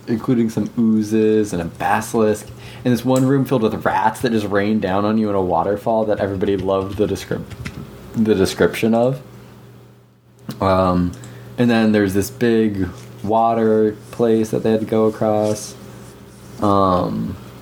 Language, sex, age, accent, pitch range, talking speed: English, male, 20-39, American, 95-120 Hz, 150 wpm